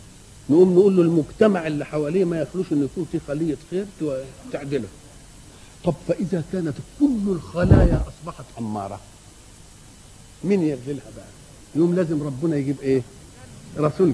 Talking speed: 120 wpm